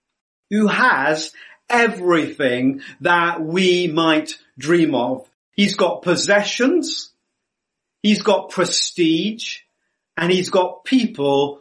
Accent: British